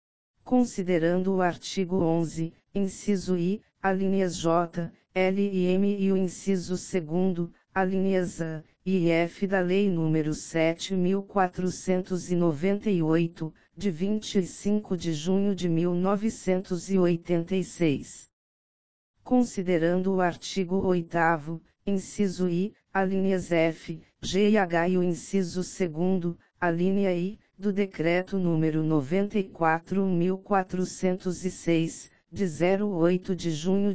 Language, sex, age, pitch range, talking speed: Portuguese, female, 50-69, 170-195 Hz, 95 wpm